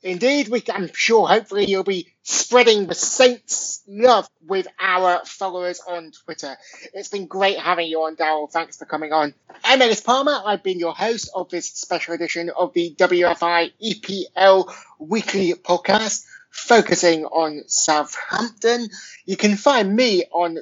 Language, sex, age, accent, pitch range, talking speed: English, male, 20-39, British, 170-215 Hz, 155 wpm